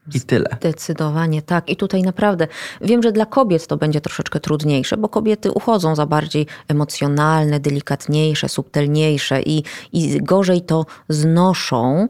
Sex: female